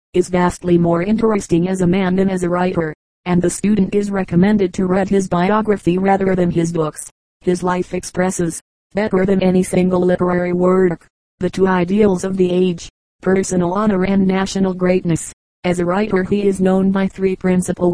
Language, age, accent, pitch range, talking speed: English, 30-49, American, 180-195 Hz, 175 wpm